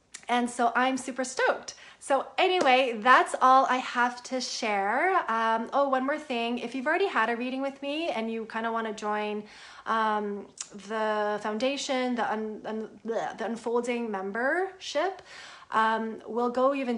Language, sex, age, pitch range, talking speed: English, female, 30-49, 210-255 Hz, 165 wpm